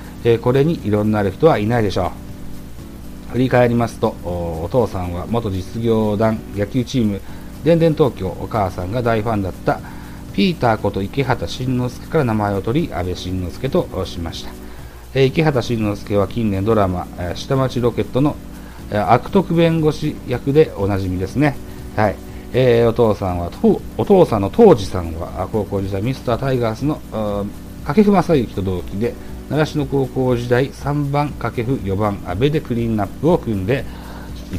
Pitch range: 95-130 Hz